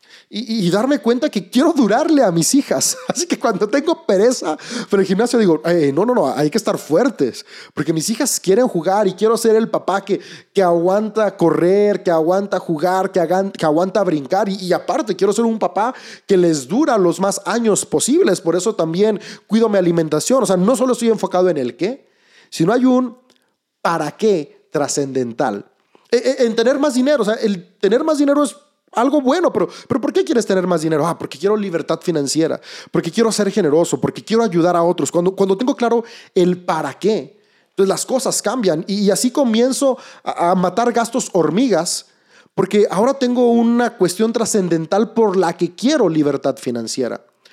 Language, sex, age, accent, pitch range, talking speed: Spanish, male, 30-49, Mexican, 175-235 Hz, 190 wpm